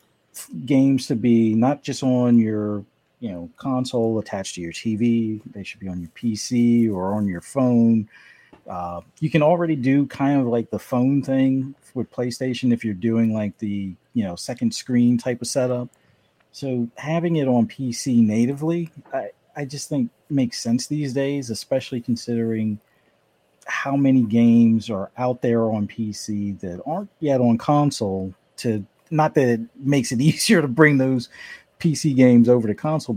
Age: 40-59